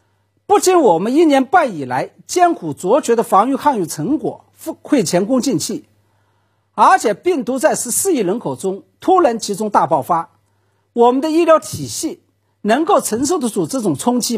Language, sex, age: Chinese, male, 50-69